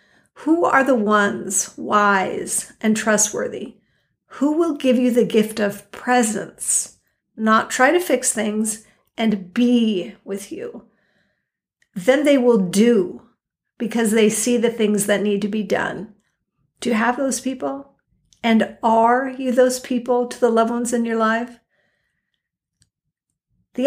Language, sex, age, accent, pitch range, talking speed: English, female, 50-69, American, 205-240 Hz, 140 wpm